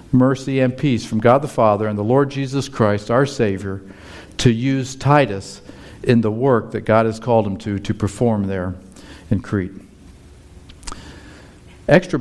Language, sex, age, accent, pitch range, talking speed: English, male, 50-69, American, 105-130 Hz, 155 wpm